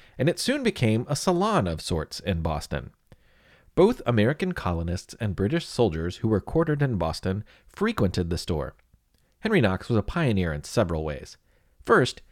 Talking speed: 160 wpm